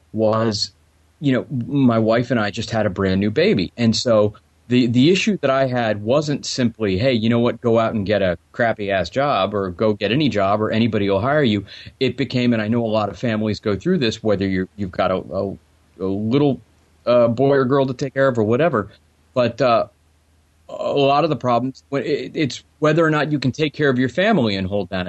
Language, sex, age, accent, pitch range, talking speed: English, male, 30-49, American, 105-135 Hz, 230 wpm